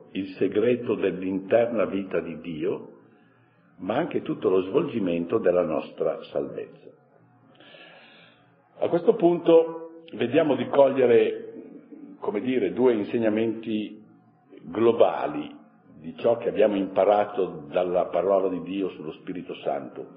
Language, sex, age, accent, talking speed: Italian, male, 50-69, native, 110 wpm